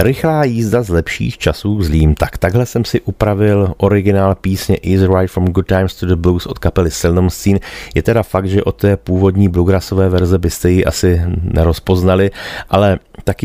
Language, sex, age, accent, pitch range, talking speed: Czech, male, 30-49, native, 85-100 Hz, 180 wpm